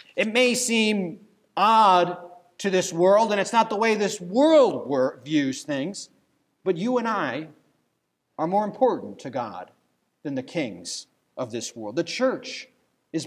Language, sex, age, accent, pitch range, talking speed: English, male, 40-59, American, 165-220 Hz, 155 wpm